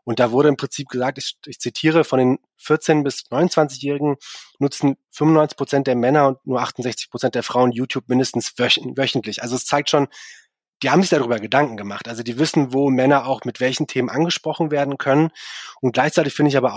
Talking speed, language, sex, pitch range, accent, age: 195 wpm, German, male, 125-150 Hz, German, 20-39